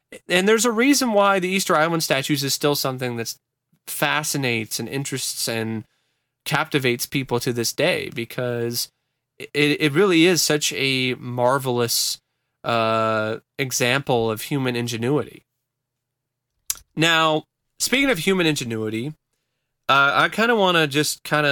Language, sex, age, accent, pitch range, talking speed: English, male, 30-49, American, 120-150 Hz, 135 wpm